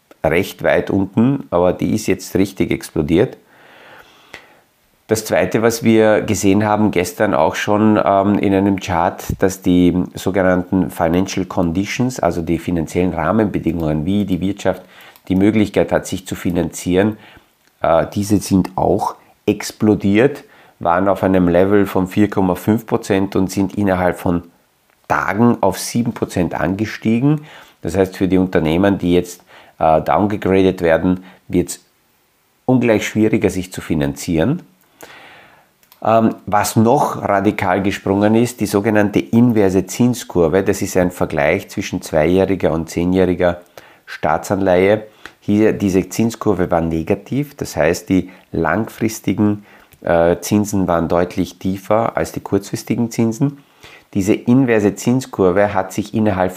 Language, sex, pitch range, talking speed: German, male, 90-110 Hz, 125 wpm